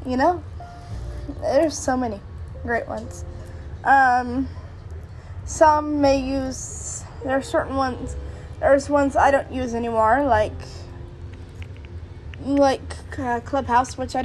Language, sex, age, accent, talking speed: English, female, 10-29, American, 115 wpm